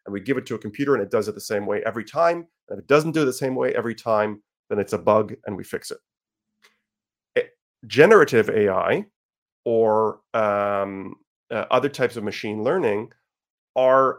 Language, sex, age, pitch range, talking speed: English, male, 30-49, 110-145 Hz, 195 wpm